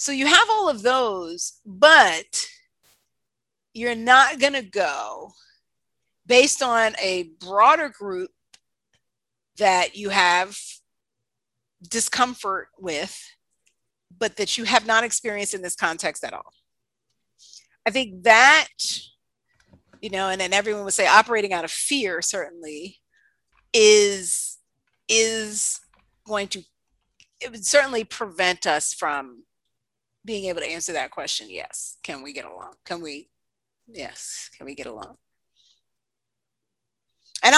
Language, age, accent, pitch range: English, 40-59, American, 190-260 Hz